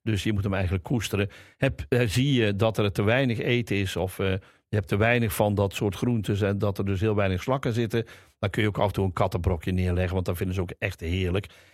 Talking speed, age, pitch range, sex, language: 245 wpm, 50-69, 95-120 Hz, male, Dutch